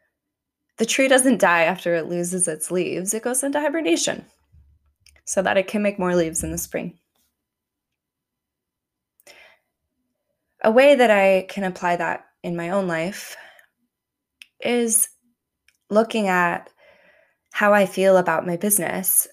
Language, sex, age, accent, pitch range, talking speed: English, female, 20-39, American, 170-210 Hz, 135 wpm